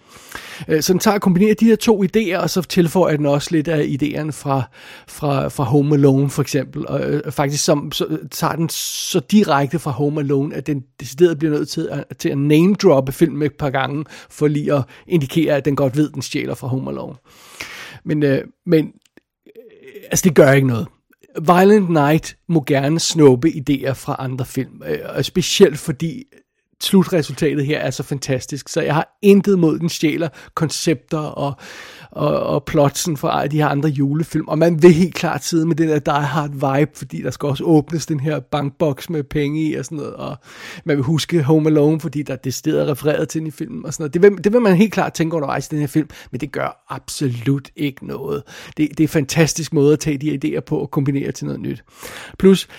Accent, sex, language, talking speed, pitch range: native, male, Danish, 205 wpm, 145-165 Hz